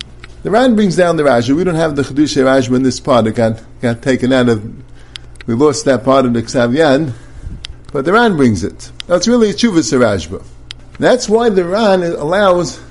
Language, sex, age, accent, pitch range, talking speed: English, male, 50-69, American, 135-230 Hz, 200 wpm